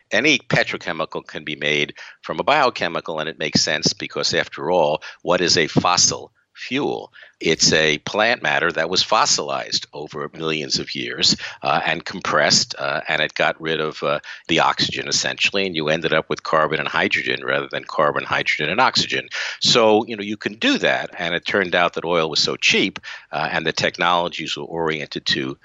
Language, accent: English, American